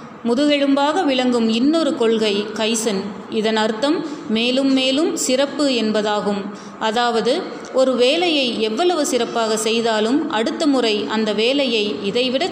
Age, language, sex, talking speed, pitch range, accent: 30-49, Tamil, female, 105 wpm, 220-270 Hz, native